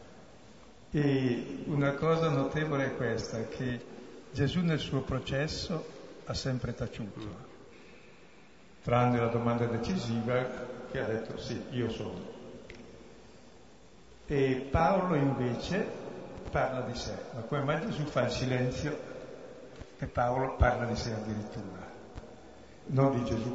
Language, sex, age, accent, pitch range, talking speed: Italian, male, 60-79, native, 115-135 Hz, 115 wpm